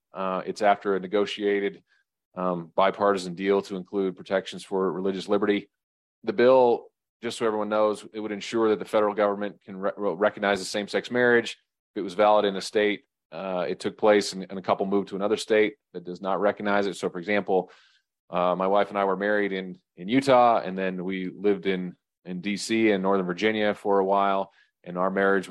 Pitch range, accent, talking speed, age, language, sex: 95-105 Hz, American, 210 wpm, 30-49, English, male